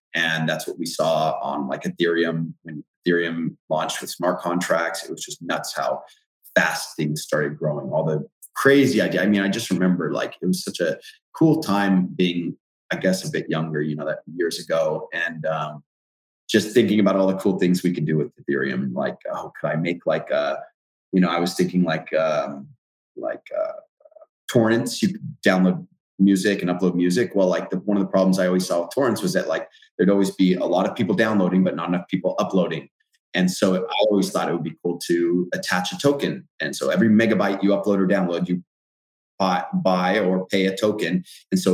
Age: 30-49